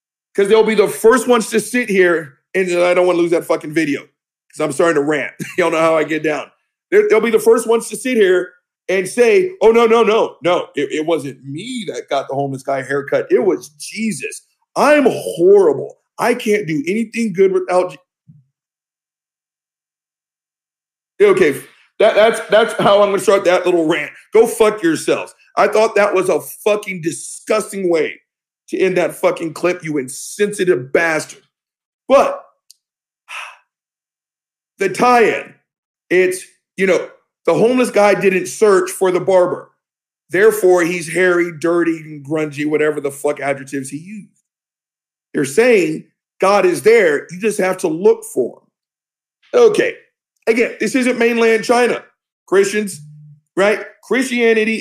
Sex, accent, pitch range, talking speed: male, American, 170-250 Hz, 160 wpm